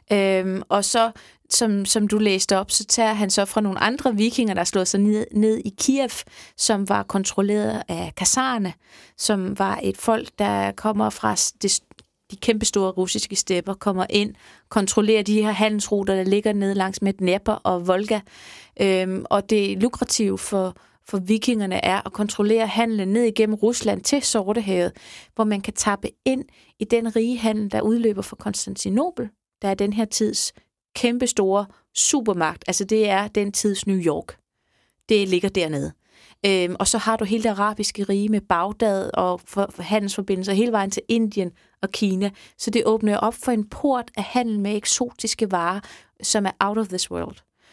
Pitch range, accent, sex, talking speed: 195-225 Hz, native, female, 175 wpm